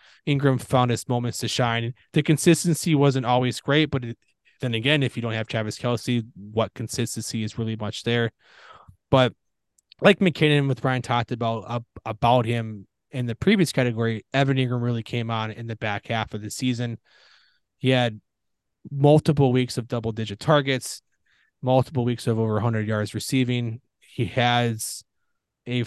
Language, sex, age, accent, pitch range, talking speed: English, male, 20-39, American, 115-135 Hz, 165 wpm